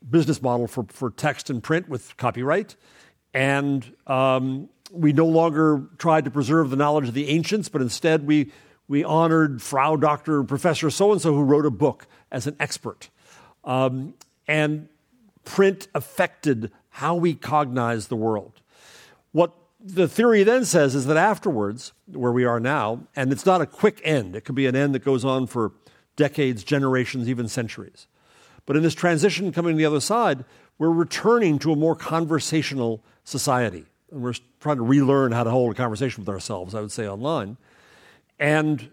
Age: 50-69